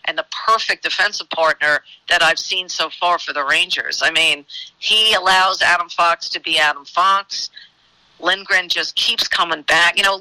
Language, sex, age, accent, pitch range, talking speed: English, female, 50-69, American, 165-205 Hz, 175 wpm